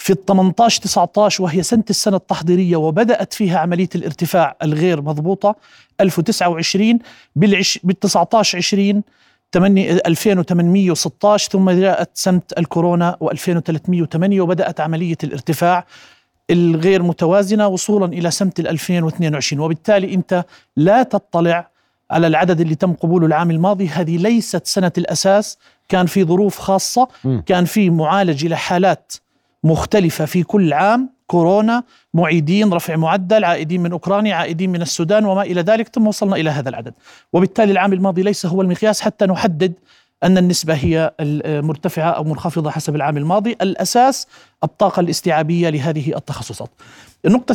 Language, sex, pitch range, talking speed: Arabic, male, 170-200 Hz, 125 wpm